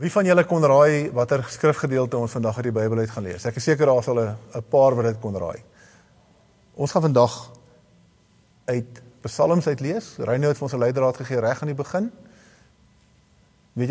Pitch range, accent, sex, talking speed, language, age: 115-155 Hz, Dutch, male, 190 wpm, English, 50-69